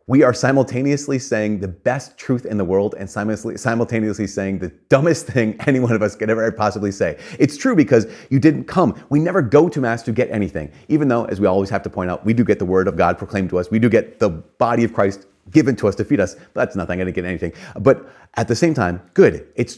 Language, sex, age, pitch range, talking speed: English, male, 30-49, 90-120 Hz, 250 wpm